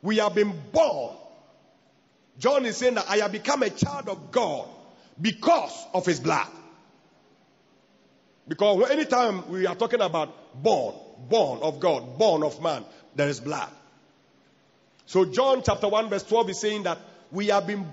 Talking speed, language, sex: 155 wpm, English, male